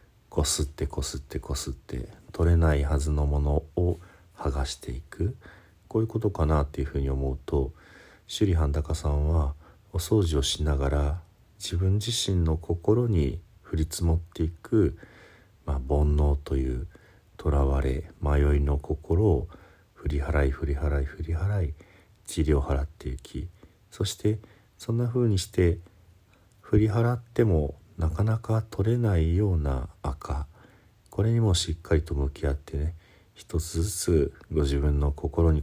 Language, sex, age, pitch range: Japanese, male, 50-69, 75-100 Hz